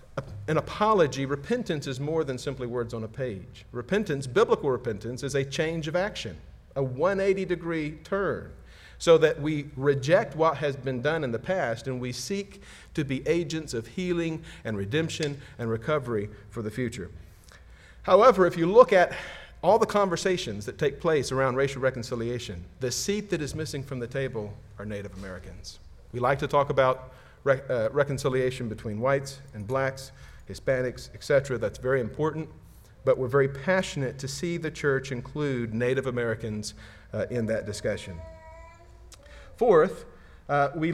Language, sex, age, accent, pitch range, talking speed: English, male, 40-59, American, 110-155 Hz, 160 wpm